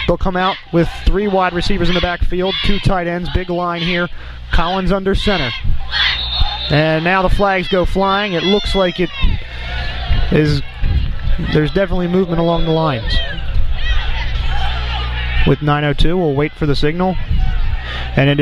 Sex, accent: male, American